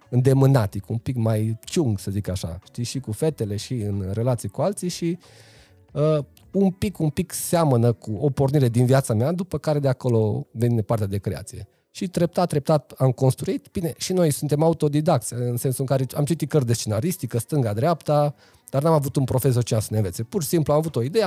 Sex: male